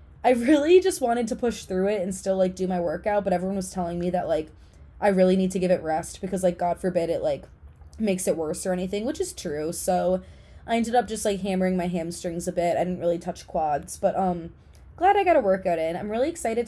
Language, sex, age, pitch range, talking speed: English, female, 20-39, 180-225 Hz, 250 wpm